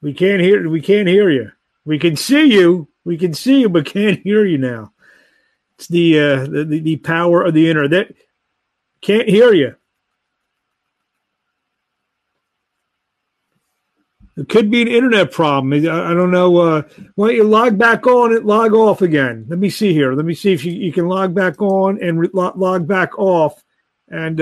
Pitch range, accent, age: 165-205 Hz, American, 50-69